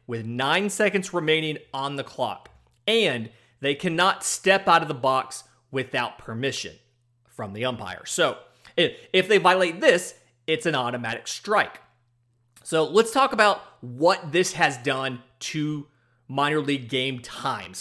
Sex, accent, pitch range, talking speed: male, American, 125-180 Hz, 140 wpm